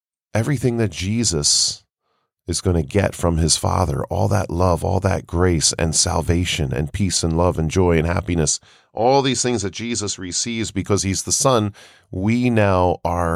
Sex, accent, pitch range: male, American, 85-115 Hz